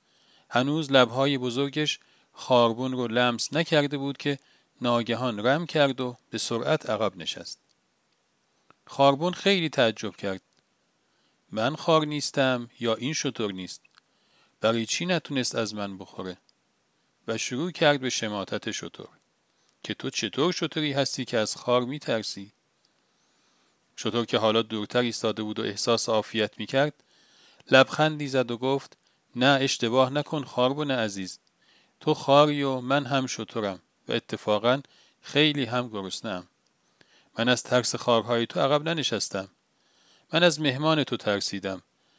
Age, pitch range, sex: 40-59, 110-140 Hz, male